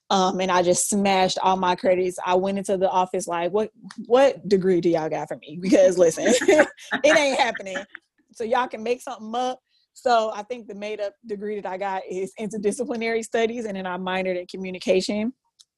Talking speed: 195 wpm